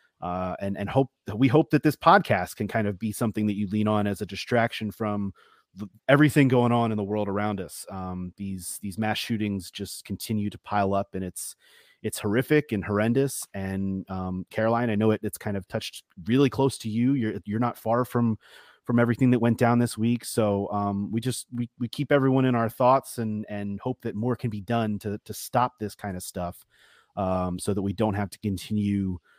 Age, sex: 30-49, male